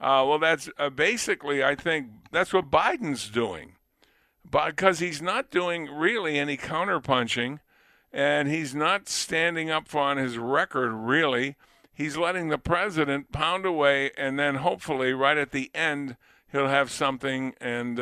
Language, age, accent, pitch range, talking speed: English, 50-69, American, 125-155 Hz, 150 wpm